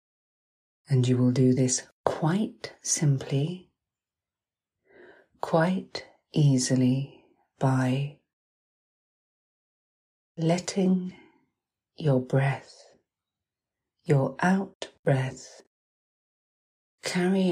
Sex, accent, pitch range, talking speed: female, British, 130-165 Hz, 55 wpm